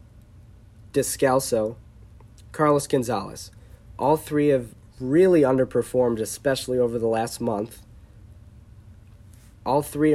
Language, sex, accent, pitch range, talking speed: English, male, American, 105-135 Hz, 90 wpm